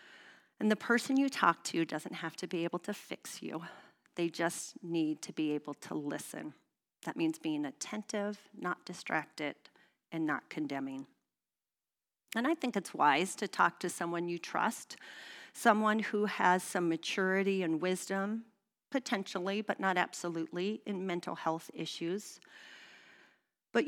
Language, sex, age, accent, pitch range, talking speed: English, female, 40-59, American, 170-230 Hz, 145 wpm